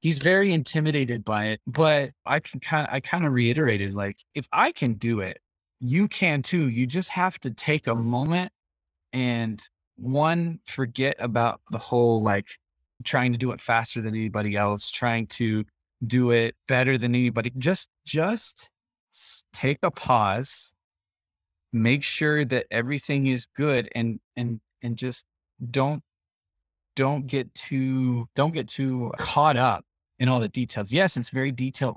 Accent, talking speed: American, 160 wpm